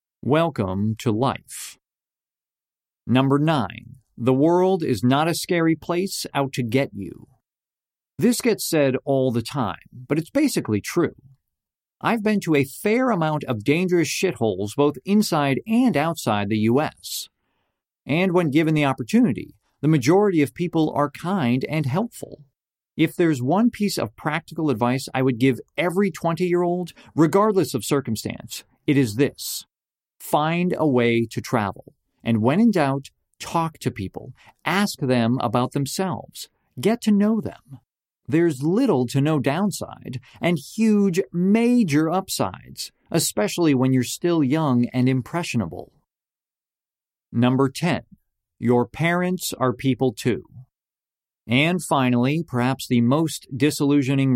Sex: male